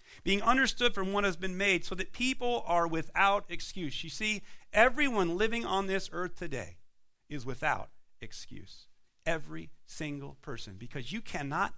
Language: English